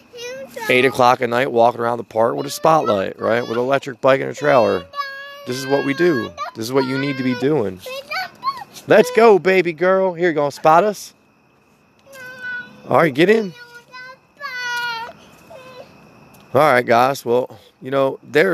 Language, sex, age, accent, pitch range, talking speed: English, male, 30-49, American, 110-170 Hz, 170 wpm